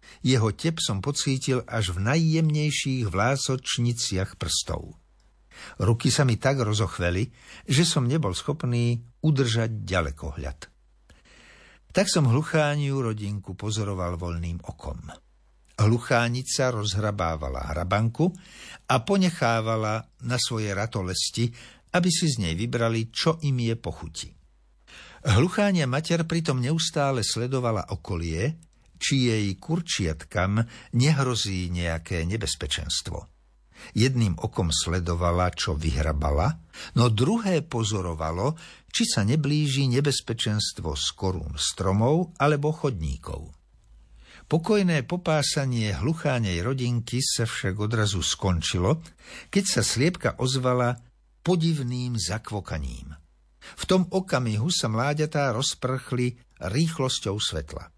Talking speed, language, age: 95 wpm, Slovak, 60-79